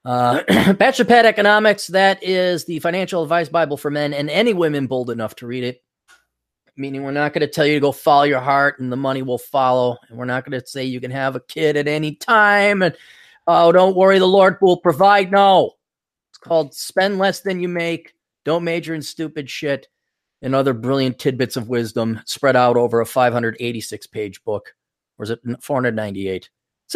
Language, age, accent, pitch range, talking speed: English, 30-49, American, 125-175 Hz, 200 wpm